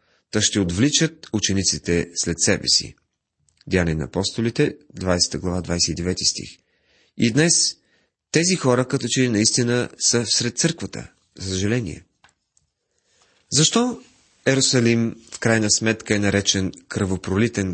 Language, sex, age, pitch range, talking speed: Bulgarian, male, 30-49, 100-140 Hz, 110 wpm